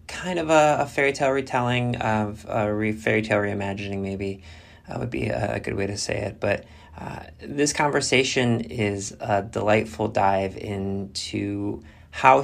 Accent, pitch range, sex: American, 95-115 Hz, male